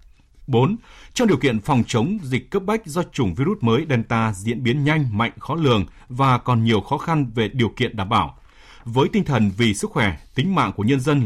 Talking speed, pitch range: 220 wpm, 110-150 Hz